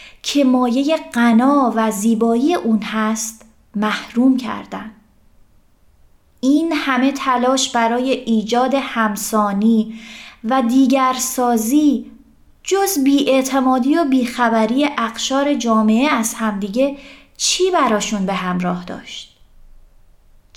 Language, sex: Persian, female